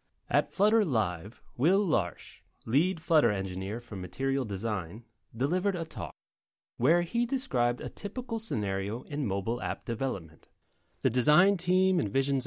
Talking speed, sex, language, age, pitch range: 135 wpm, male, English, 30-49, 105-170 Hz